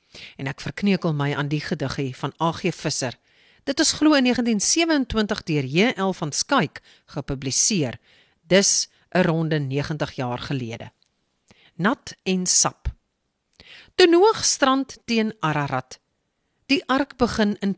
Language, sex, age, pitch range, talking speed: English, female, 50-69, 145-230 Hz, 130 wpm